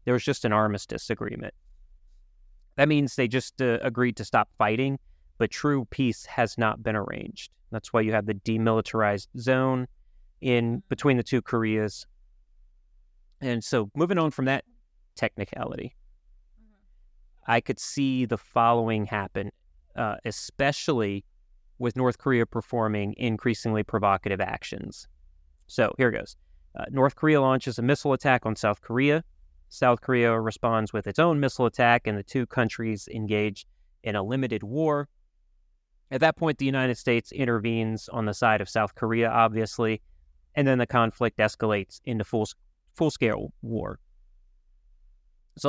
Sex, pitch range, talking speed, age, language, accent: male, 100-130 Hz, 145 wpm, 30-49, English, American